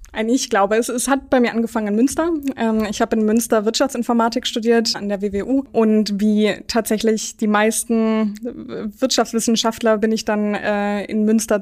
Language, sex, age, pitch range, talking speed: German, female, 20-39, 205-230 Hz, 165 wpm